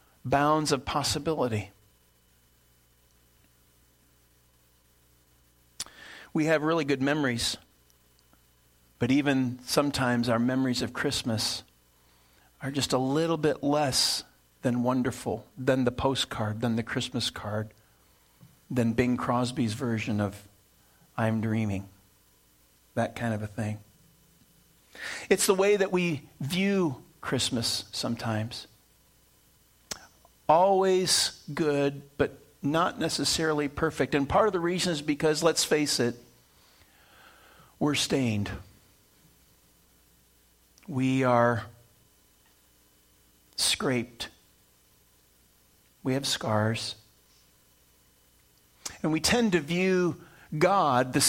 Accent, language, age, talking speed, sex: American, English, 40-59, 95 wpm, male